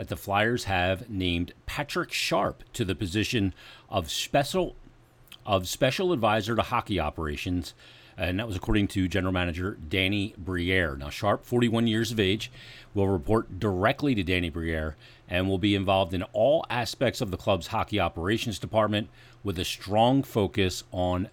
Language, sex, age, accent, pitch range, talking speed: English, male, 40-59, American, 90-115 Hz, 160 wpm